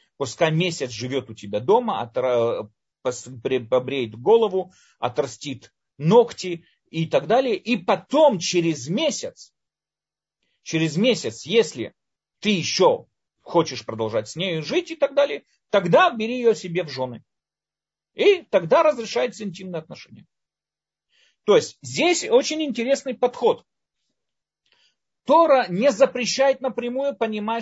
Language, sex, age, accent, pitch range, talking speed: Russian, male, 40-59, native, 155-230 Hz, 115 wpm